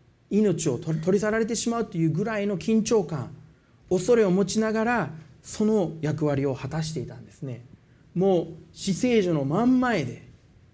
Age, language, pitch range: 40-59, Japanese, 125-185 Hz